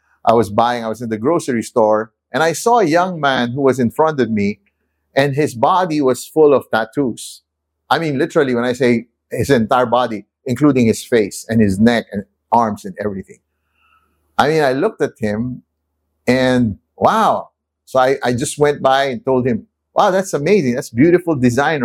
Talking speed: 190 wpm